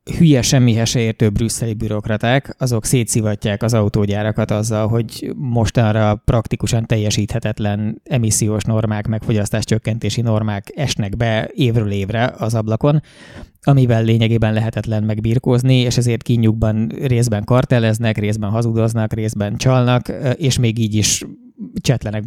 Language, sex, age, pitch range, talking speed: Hungarian, male, 20-39, 105-125 Hz, 115 wpm